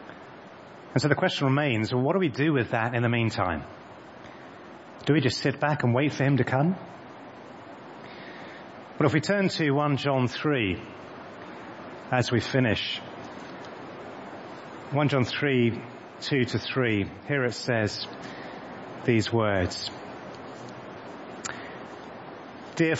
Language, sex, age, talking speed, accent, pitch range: English, male, 30-49, 125 wpm, British, 110-140 Hz